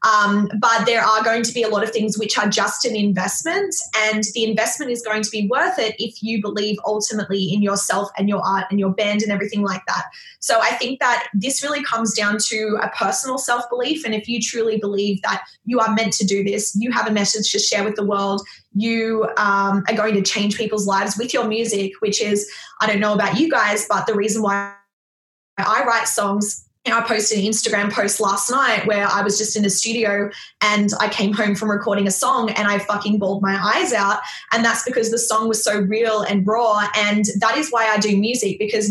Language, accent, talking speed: English, Australian, 225 wpm